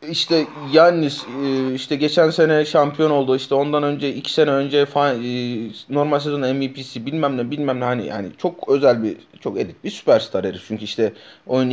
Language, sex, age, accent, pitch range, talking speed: Turkish, male, 30-49, native, 110-150 Hz, 170 wpm